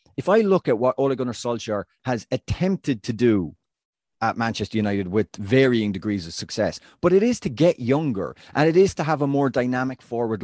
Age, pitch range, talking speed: 30-49, 105-130 Hz, 200 wpm